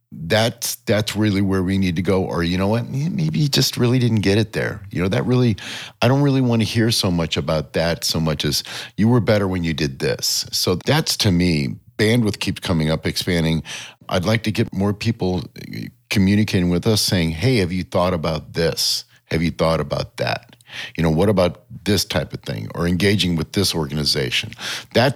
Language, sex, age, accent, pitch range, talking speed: English, male, 50-69, American, 85-115 Hz, 210 wpm